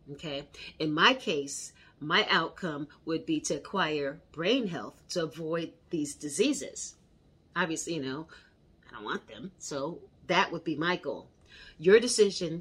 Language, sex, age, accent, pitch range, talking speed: English, female, 40-59, American, 145-180 Hz, 150 wpm